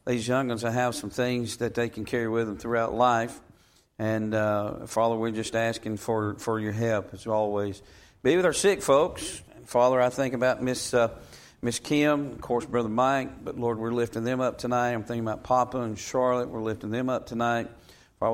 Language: English